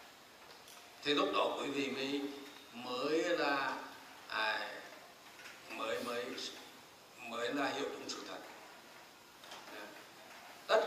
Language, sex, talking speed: Vietnamese, male, 100 wpm